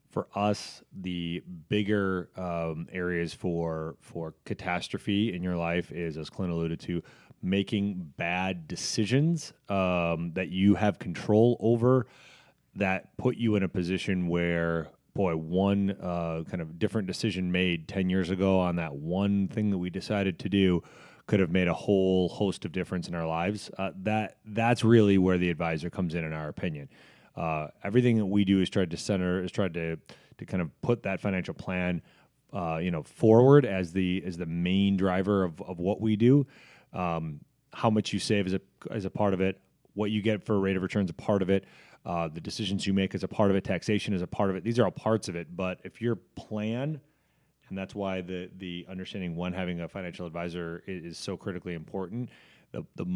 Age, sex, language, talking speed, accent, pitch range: 30-49, male, English, 200 wpm, American, 90-105 Hz